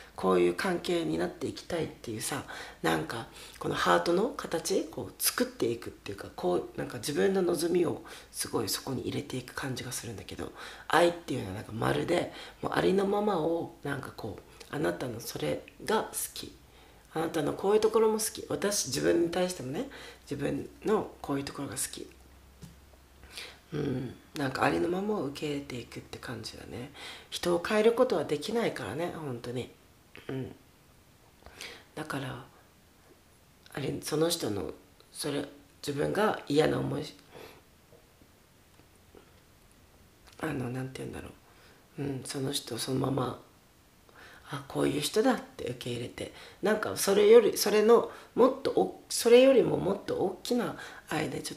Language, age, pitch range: Japanese, 40-59, 125-195 Hz